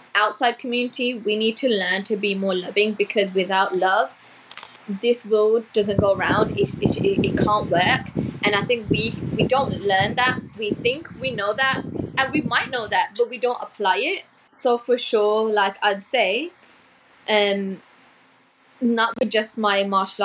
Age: 10-29